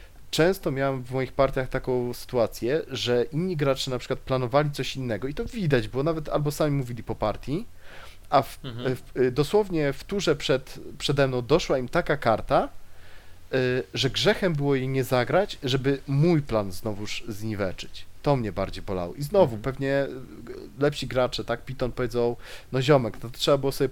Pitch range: 120-145 Hz